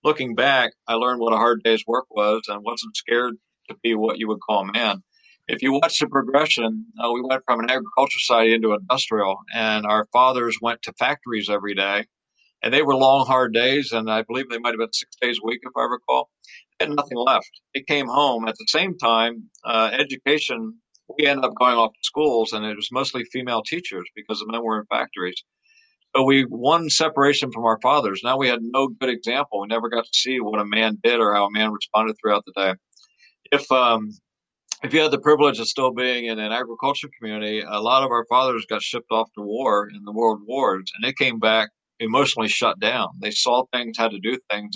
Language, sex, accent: English, male, American